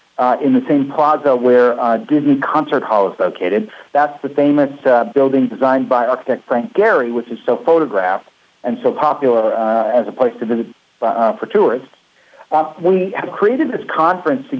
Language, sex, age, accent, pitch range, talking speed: English, male, 50-69, American, 130-160 Hz, 185 wpm